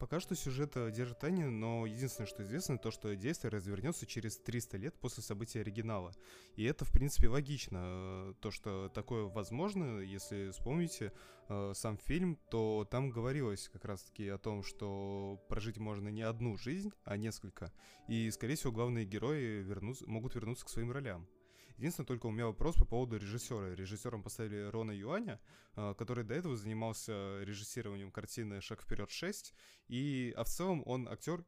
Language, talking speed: Russian, 160 wpm